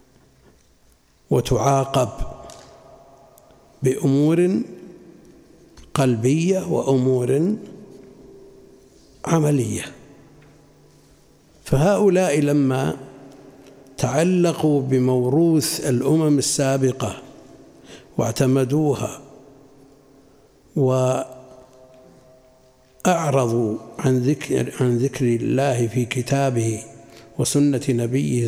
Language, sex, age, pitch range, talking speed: Arabic, male, 60-79, 125-150 Hz, 40 wpm